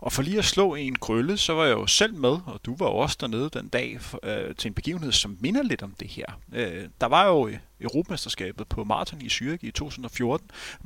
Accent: native